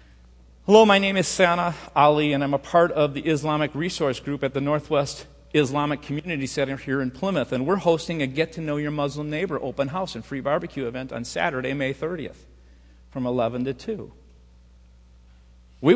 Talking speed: 185 wpm